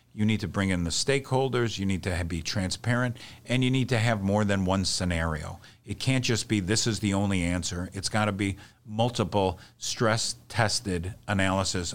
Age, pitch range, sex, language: 50-69, 95-120 Hz, male, English